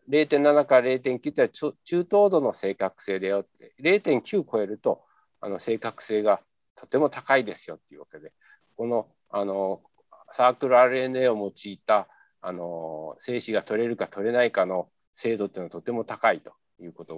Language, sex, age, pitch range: Japanese, male, 50-69, 100-145 Hz